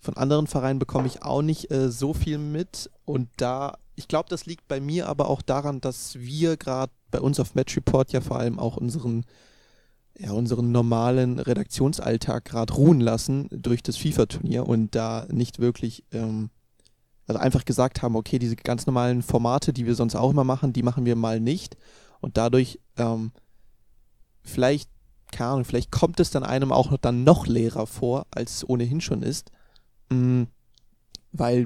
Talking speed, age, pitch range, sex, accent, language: 175 wpm, 30-49, 120-135 Hz, male, German, German